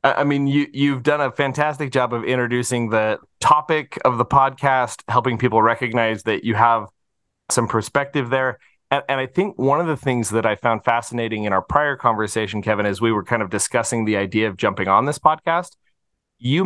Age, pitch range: 30-49, 115-145 Hz